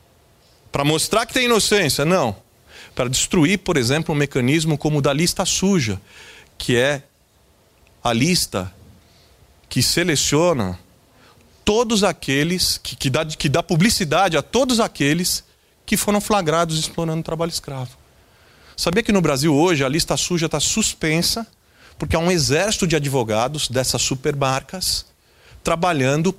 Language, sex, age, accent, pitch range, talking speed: Portuguese, male, 40-59, Brazilian, 125-185 Hz, 135 wpm